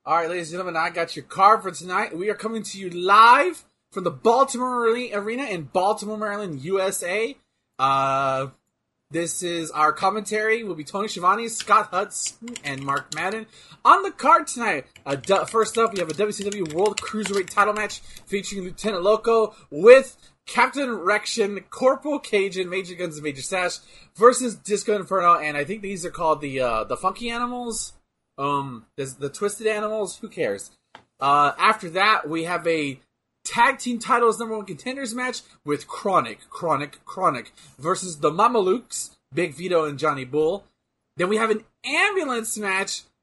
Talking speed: 165 wpm